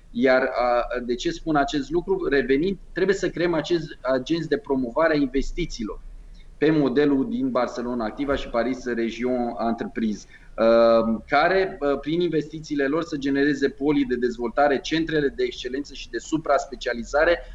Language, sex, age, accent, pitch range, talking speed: Romanian, male, 20-39, native, 125-155 Hz, 135 wpm